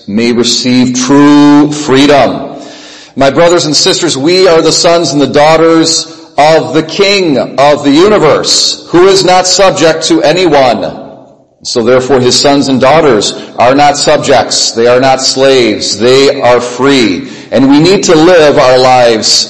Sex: male